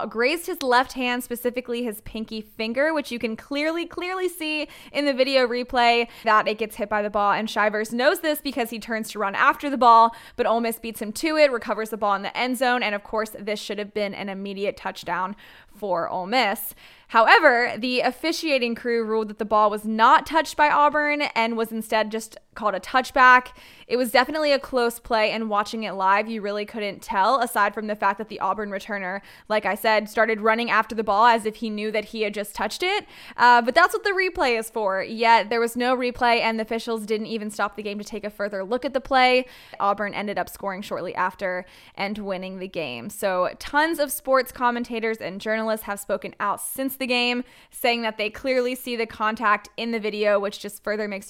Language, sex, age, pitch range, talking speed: English, female, 10-29, 210-250 Hz, 220 wpm